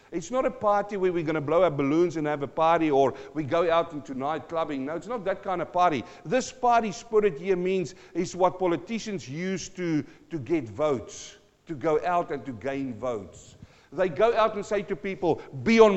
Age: 50-69